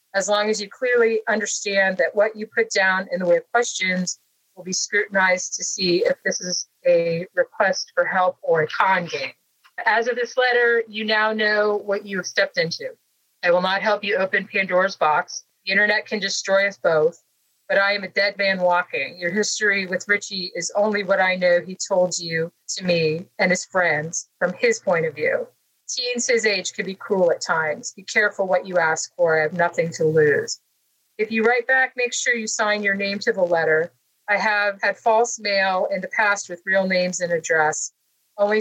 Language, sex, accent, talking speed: English, female, American, 205 wpm